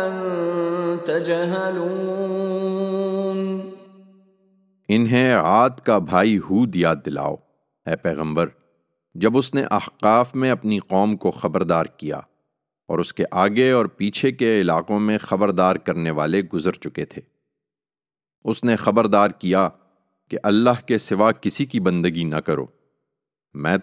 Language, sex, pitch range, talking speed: English, male, 85-125 Hz, 110 wpm